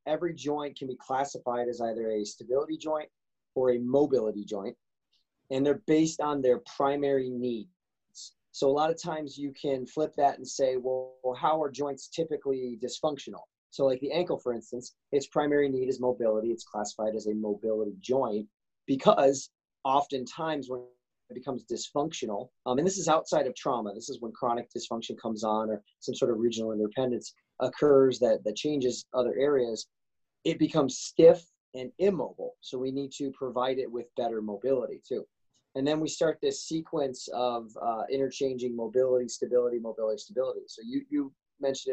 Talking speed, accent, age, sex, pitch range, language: 170 wpm, American, 30-49, male, 120-155 Hz, English